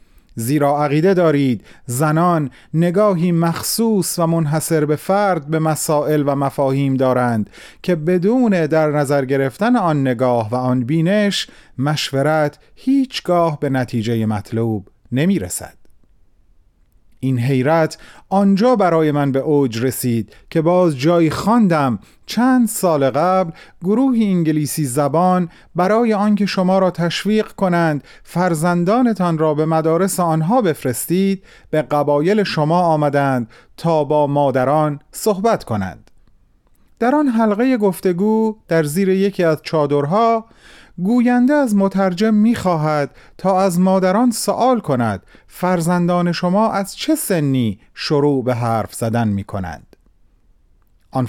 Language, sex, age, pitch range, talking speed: Persian, male, 30-49, 135-200 Hz, 115 wpm